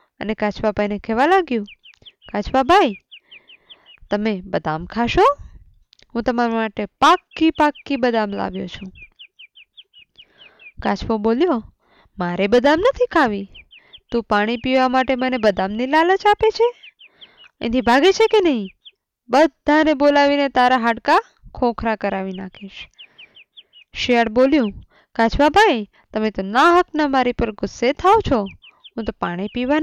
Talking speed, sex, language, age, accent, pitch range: 35 wpm, female, English, 20-39, Indian, 220-310 Hz